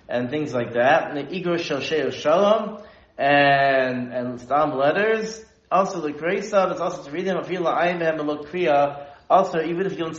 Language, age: English, 30-49